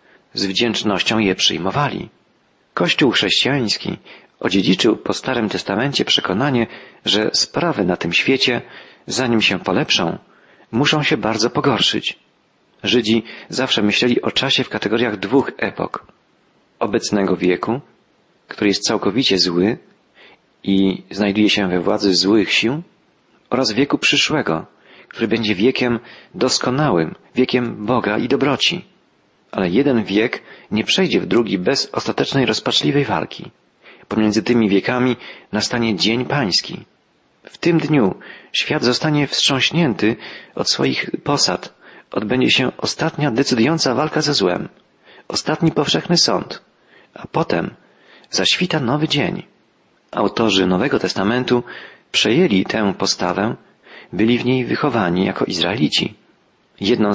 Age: 40-59